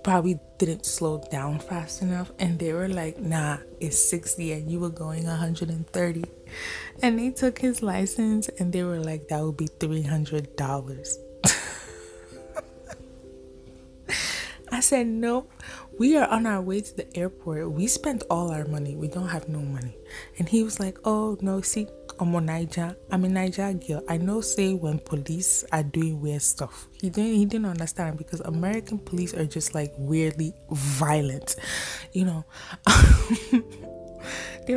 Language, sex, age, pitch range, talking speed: English, female, 20-39, 150-195 Hz, 150 wpm